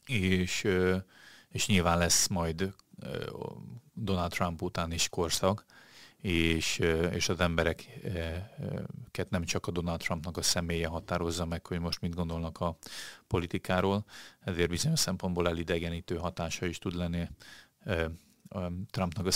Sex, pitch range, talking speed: male, 85-95 Hz, 120 wpm